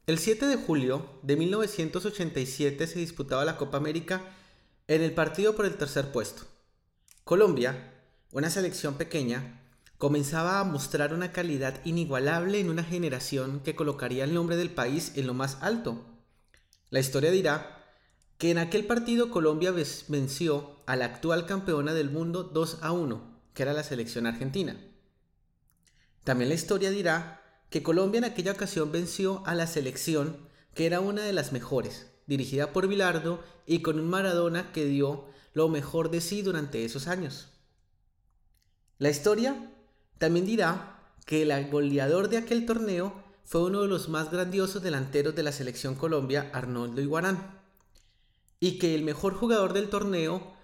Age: 30-49